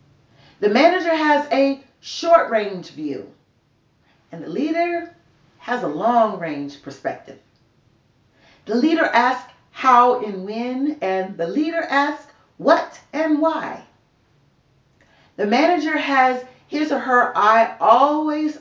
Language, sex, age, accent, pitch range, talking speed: English, female, 40-59, American, 170-280 Hz, 110 wpm